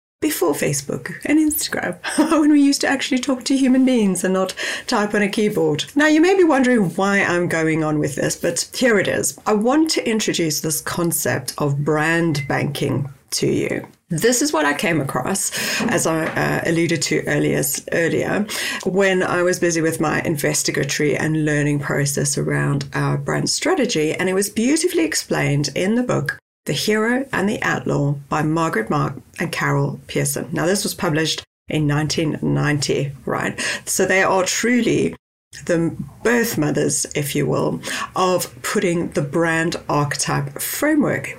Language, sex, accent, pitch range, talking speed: English, female, British, 150-235 Hz, 165 wpm